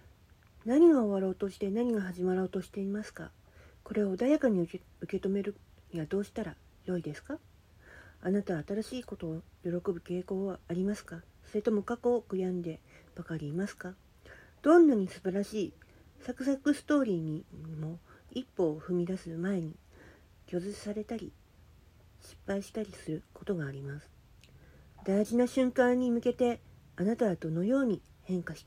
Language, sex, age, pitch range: Japanese, female, 50-69, 160-215 Hz